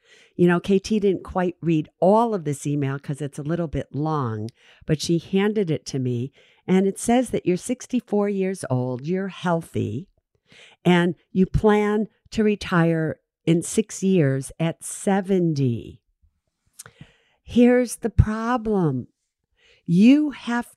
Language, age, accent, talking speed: English, 50-69, American, 135 wpm